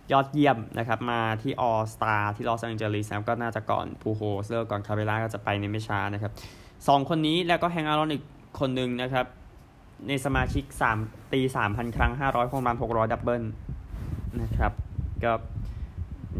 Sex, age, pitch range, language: male, 20-39, 100-125 Hz, Thai